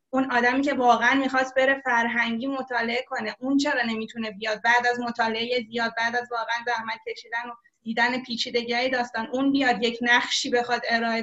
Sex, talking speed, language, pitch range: female, 170 wpm, Persian, 235-265 Hz